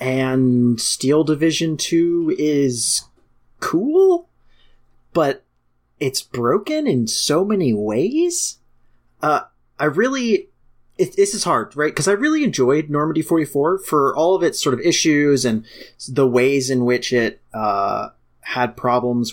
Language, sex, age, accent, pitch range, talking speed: English, male, 30-49, American, 110-145 Hz, 135 wpm